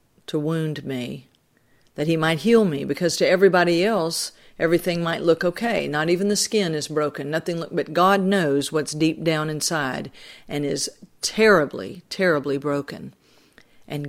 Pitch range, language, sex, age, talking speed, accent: 145-180 Hz, English, female, 50-69, 160 wpm, American